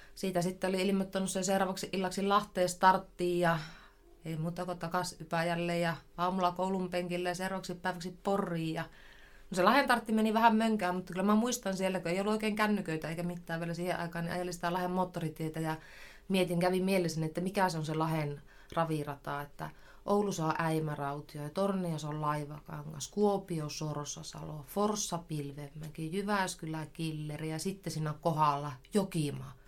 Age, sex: 30-49, female